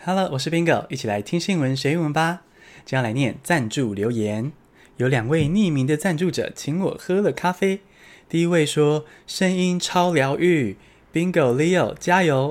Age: 20-39